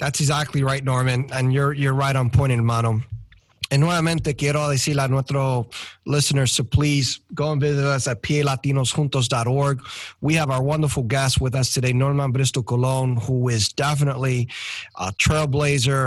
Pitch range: 125-145 Hz